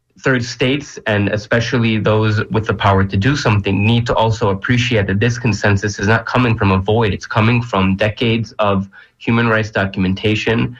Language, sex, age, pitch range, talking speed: English, male, 20-39, 100-120 Hz, 180 wpm